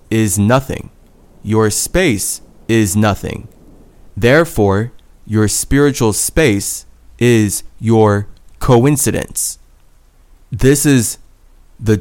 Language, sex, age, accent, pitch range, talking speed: English, male, 20-39, American, 100-125 Hz, 80 wpm